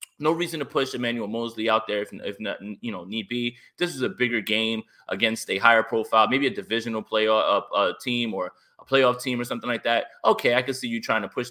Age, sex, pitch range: 20-39, male, 110-145 Hz